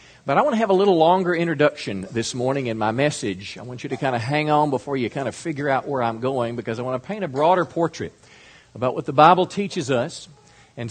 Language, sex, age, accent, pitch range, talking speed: English, male, 50-69, American, 110-145 Hz, 255 wpm